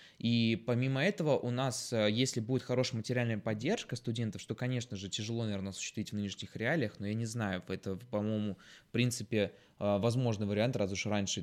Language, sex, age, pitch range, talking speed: Russian, male, 20-39, 105-130 Hz, 175 wpm